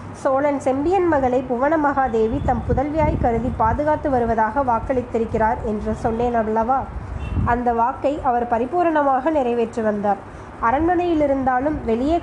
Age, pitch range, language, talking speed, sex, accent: 20-39, 230-290 Hz, Tamil, 115 wpm, female, native